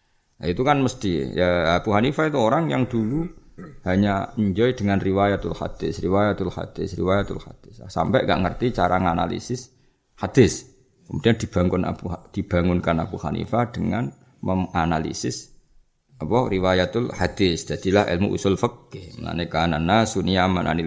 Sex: male